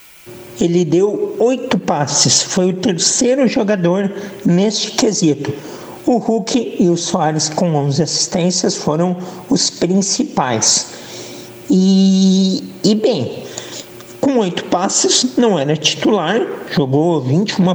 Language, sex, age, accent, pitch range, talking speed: Portuguese, male, 60-79, Brazilian, 160-210 Hz, 110 wpm